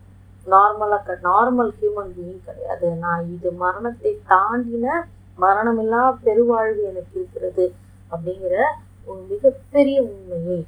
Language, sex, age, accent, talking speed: Tamil, female, 20-39, native, 90 wpm